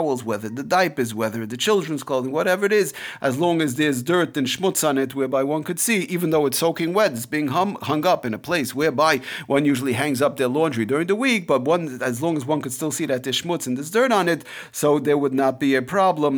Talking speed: 255 wpm